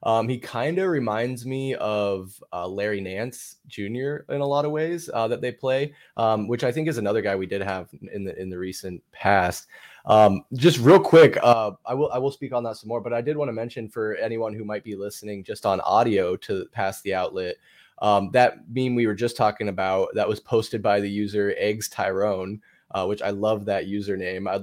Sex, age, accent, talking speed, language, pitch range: male, 20-39, American, 225 wpm, English, 100-125 Hz